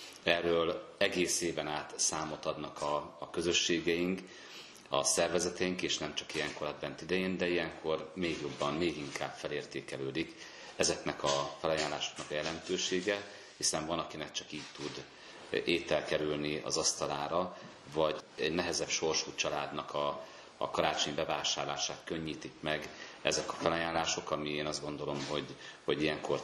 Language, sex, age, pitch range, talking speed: Hungarian, male, 40-59, 75-85 Hz, 140 wpm